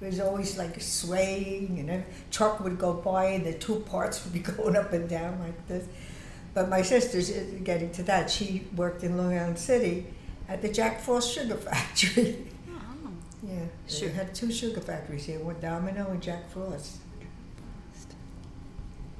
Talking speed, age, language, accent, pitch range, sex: 175 wpm, 60-79, English, American, 170-205 Hz, female